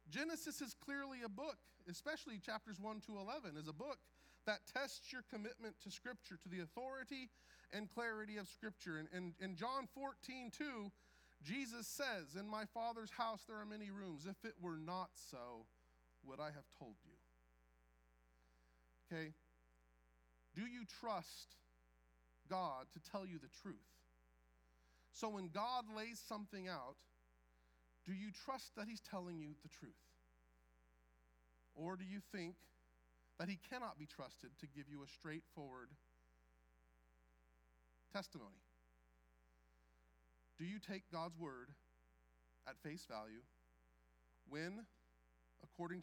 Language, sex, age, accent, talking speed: English, male, 40-59, American, 135 wpm